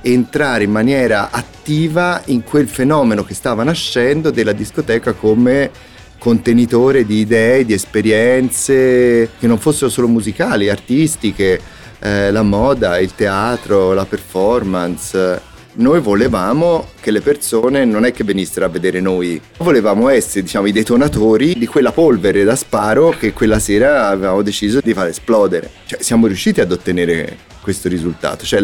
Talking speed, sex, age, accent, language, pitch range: 145 wpm, male, 30-49, native, Italian, 95-115 Hz